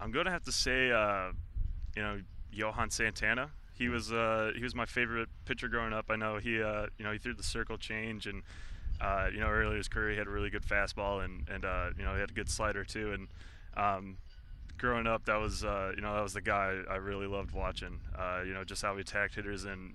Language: English